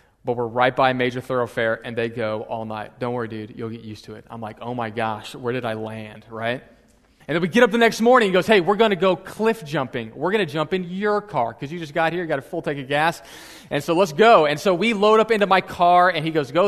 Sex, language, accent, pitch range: male, English, American, 125-175 Hz